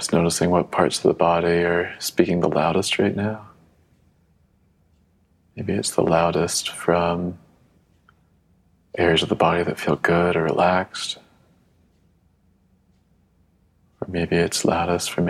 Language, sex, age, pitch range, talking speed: English, male, 30-49, 85-90 Hz, 120 wpm